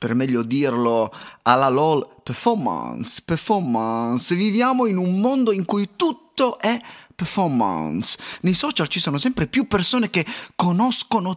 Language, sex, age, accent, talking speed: Italian, male, 30-49, native, 130 wpm